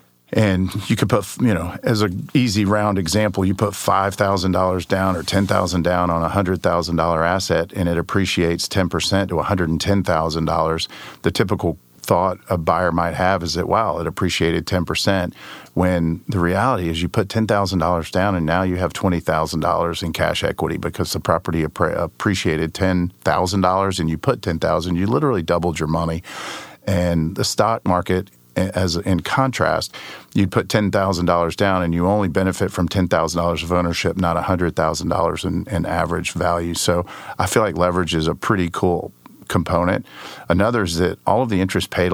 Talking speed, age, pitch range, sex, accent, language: 160 wpm, 40-59, 85-95 Hz, male, American, English